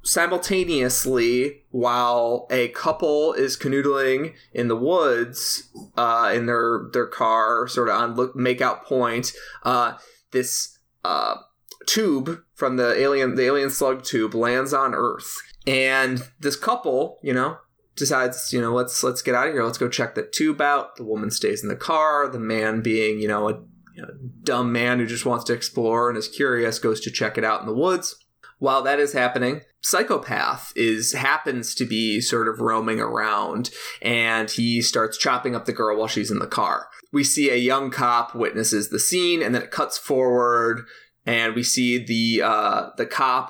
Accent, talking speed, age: American, 180 wpm, 20-39